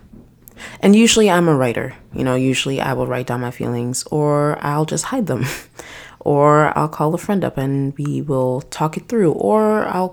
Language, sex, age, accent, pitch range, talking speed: English, female, 20-39, American, 130-165 Hz, 195 wpm